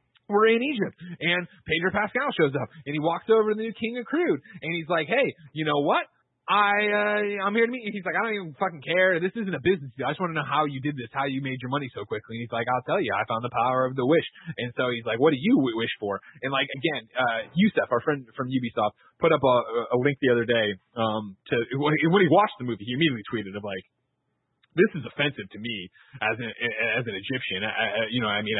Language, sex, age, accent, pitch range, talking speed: English, male, 30-49, American, 125-175 Hz, 260 wpm